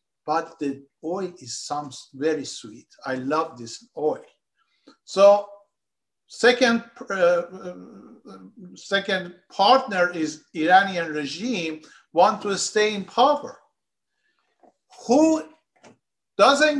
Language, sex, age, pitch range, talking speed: Persian, male, 50-69, 165-245 Hz, 95 wpm